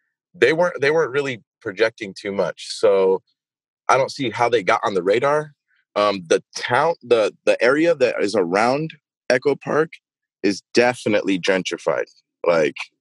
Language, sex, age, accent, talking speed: English, male, 20-39, American, 150 wpm